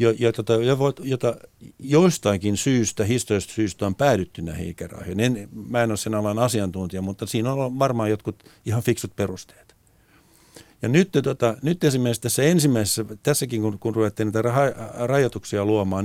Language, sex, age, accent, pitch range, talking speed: Finnish, male, 60-79, native, 110-145 Hz, 165 wpm